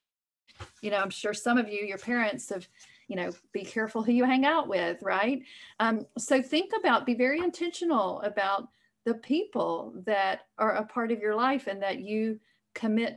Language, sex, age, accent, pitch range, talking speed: English, female, 40-59, American, 200-255 Hz, 185 wpm